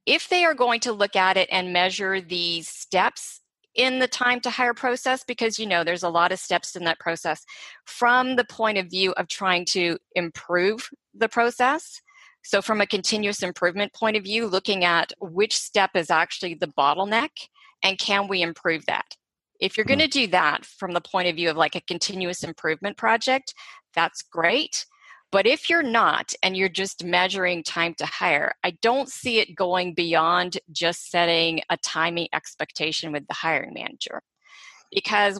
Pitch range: 170-220 Hz